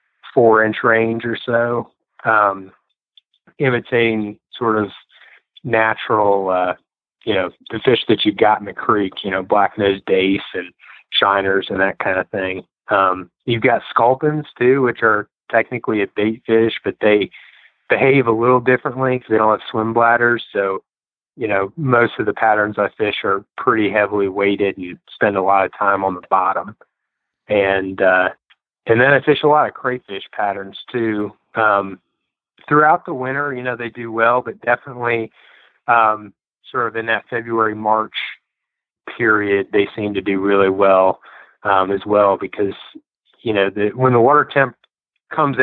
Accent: American